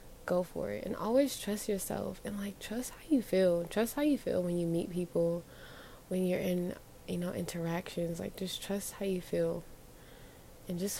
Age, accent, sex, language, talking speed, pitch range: 20-39, American, female, English, 190 wpm, 175-205 Hz